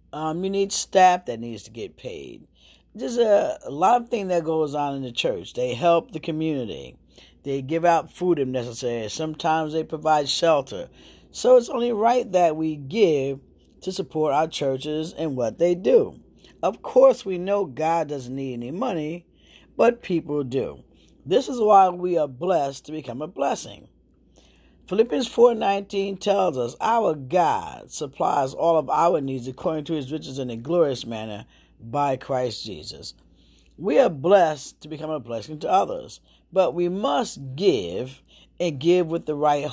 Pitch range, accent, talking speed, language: 140-185 Hz, American, 170 wpm, English